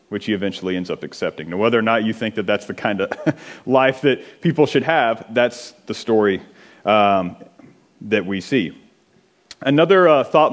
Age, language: 40-59, English